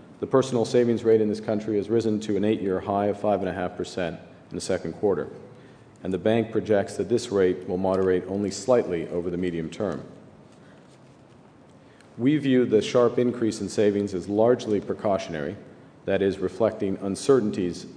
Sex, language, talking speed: male, English, 160 wpm